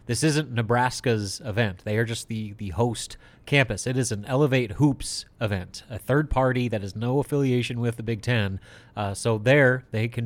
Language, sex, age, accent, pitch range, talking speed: English, male, 30-49, American, 110-135 Hz, 195 wpm